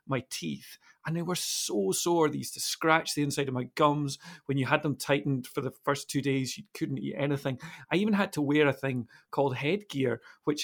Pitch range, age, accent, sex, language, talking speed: 125-150 Hz, 40-59, British, male, English, 225 wpm